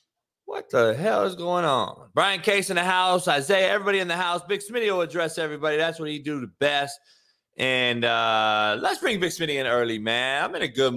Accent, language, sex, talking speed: American, English, male, 220 wpm